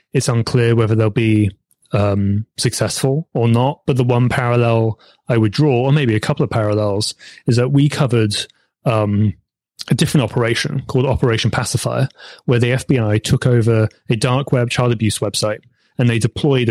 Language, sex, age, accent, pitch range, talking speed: English, male, 30-49, British, 110-140 Hz, 170 wpm